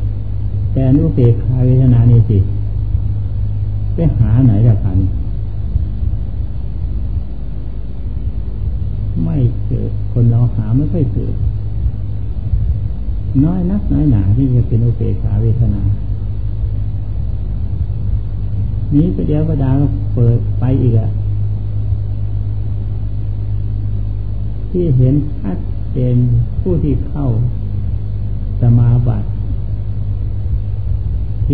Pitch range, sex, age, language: 100-115 Hz, male, 60-79, Thai